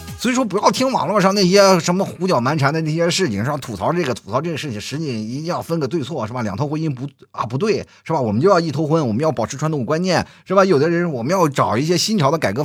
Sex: male